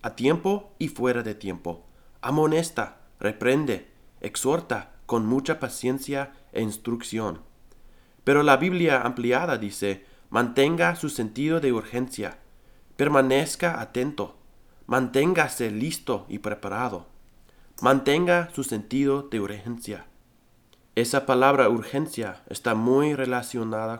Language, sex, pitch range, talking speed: English, male, 110-135 Hz, 105 wpm